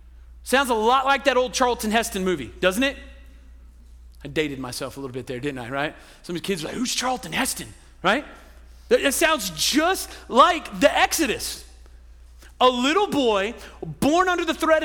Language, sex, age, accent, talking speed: English, male, 40-59, American, 180 wpm